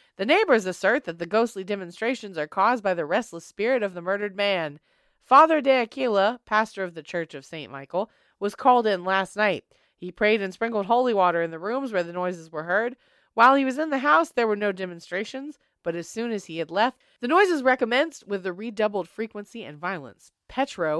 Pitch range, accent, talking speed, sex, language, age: 170-230 Hz, American, 210 wpm, female, English, 30-49